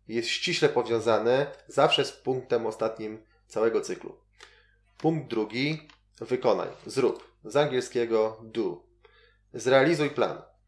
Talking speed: 100 wpm